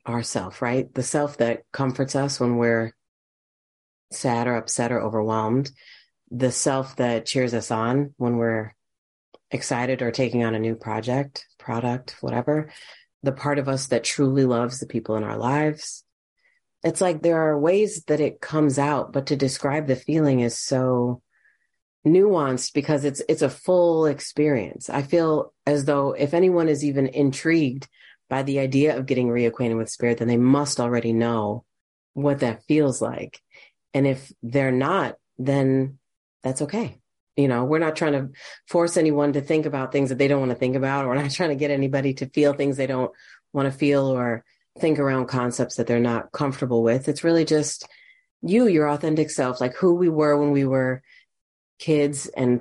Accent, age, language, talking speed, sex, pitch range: American, 30-49, English, 180 wpm, female, 120-150 Hz